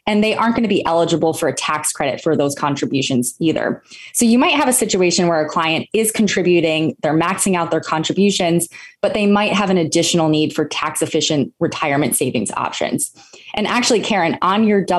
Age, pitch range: 20-39, 155-190 Hz